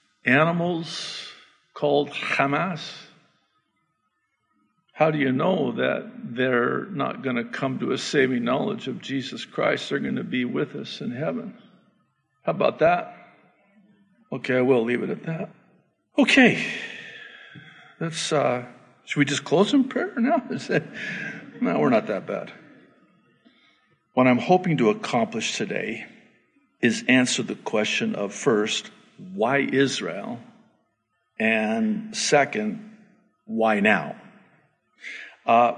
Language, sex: English, male